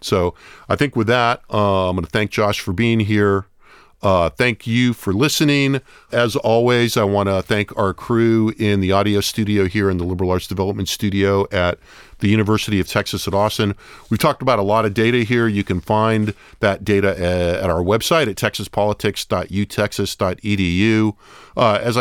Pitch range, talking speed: 95-115 Hz, 175 wpm